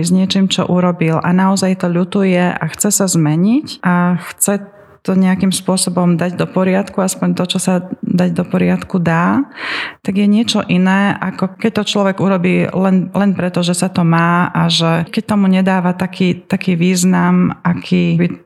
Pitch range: 175-195 Hz